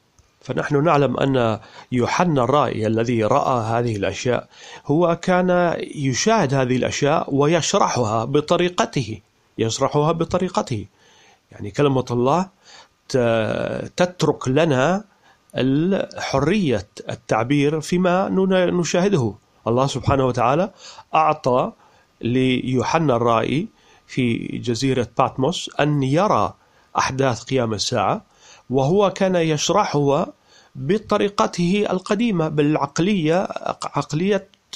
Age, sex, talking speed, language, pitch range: 40-59, male, 80 wpm, Italian, 125-175 Hz